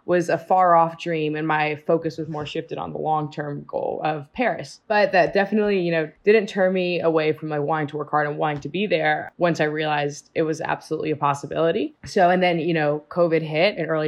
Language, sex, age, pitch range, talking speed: English, female, 20-39, 155-180 Hz, 235 wpm